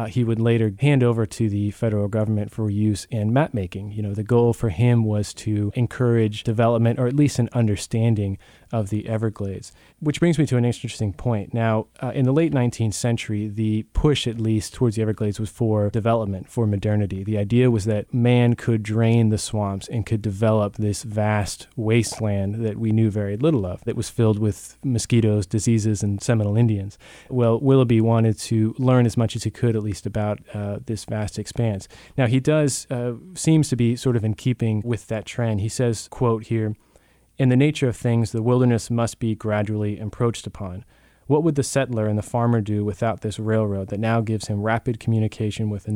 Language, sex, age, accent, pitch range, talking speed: English, male, 20-39, American, 105-120 Hz, 200 wpm